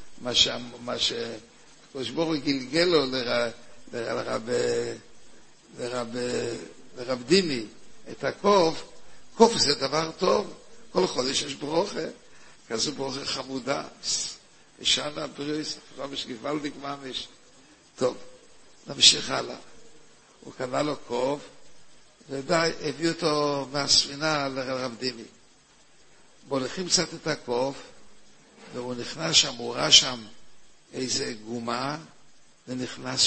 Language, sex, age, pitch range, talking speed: Hebrew, male, 60-79, 130-175 Hz, 100 wpm